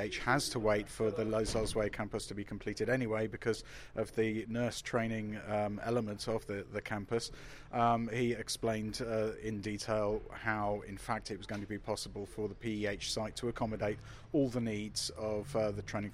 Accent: British